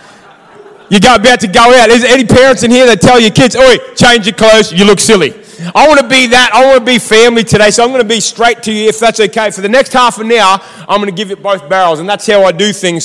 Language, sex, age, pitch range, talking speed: English, male, 20-39, 215-255 Hz, 295 wpm